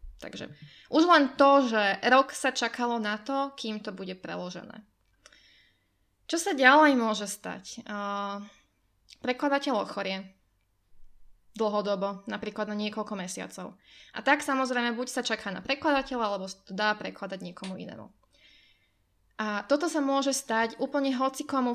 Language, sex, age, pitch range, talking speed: Slovak, female, 20-39, 200-250 Hz, 130 wpm